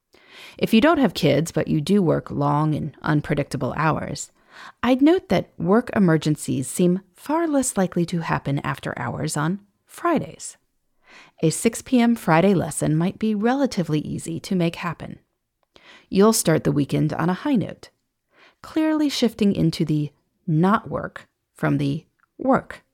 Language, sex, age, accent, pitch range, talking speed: English, female, 30-49, American, 155-240 Hz, 145 wpm